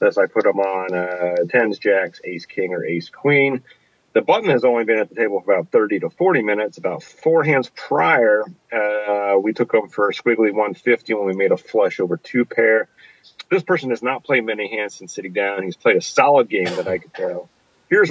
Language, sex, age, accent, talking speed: English, male, 40-59, American, 220 wpm